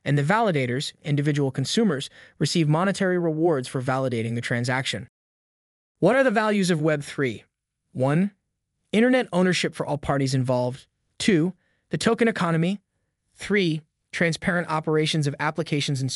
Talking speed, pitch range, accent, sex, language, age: 130 wpm, 140-180 Hz, American, male, English, 20-39